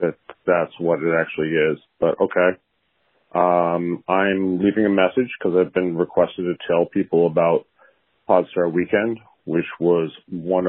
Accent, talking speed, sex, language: American, 145 wpm, male, English